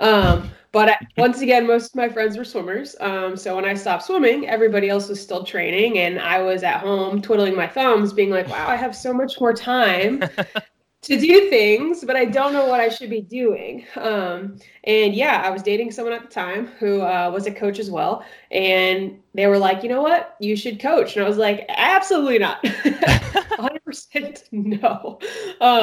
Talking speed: 195 wpm